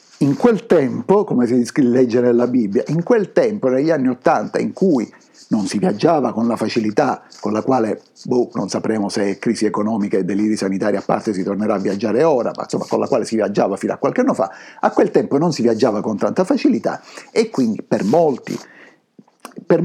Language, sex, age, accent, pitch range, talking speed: Italian, male, 50-69, native, 120-180 Hz, 205 wpm